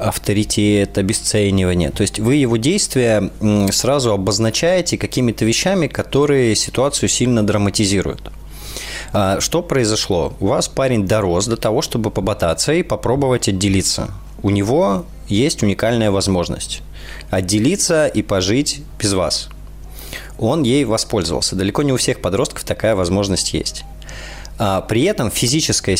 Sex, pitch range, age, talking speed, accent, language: male, 90-120 Hz, 20-39, 120 wpm, native, Russian